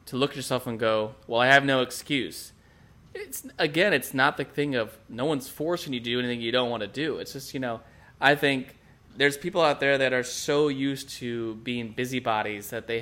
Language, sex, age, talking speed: English, male, 20-39, 225 wpm